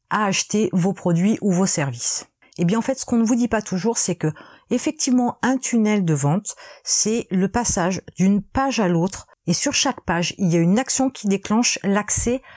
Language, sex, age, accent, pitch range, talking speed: French, female, 40-59, French, 180-240 Hz, 210 wpm